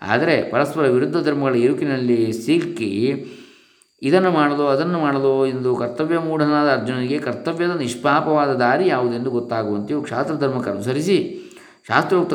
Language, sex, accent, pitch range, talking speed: Kannada, male, native, 120-145 Hz, 105 wpm